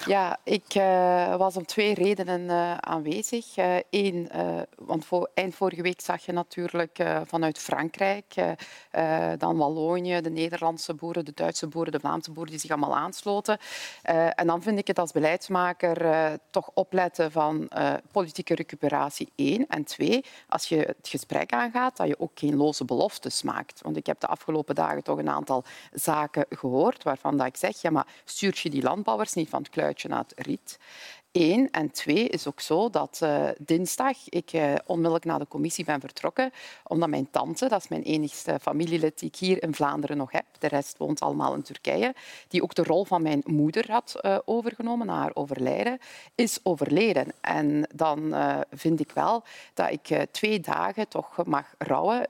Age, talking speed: 40-59, 185 wpm